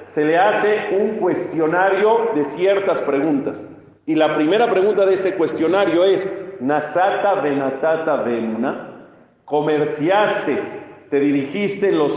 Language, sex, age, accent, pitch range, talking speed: Spanish, male, 50-69, Mexican, 150-210 Hz, 120 wpm